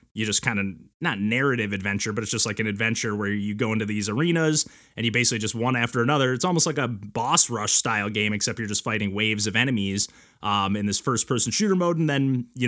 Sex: male